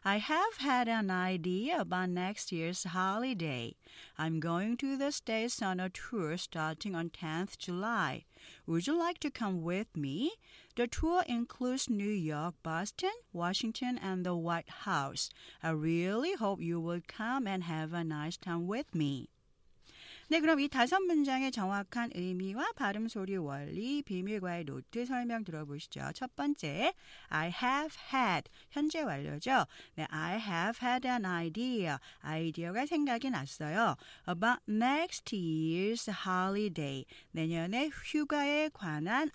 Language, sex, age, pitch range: Korean, female, 40-59, 165-255 Hz